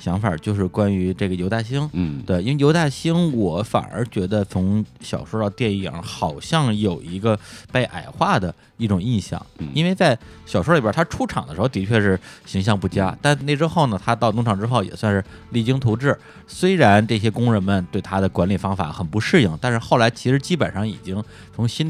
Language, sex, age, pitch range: Chinese, male, 20-39, 95-125 Hz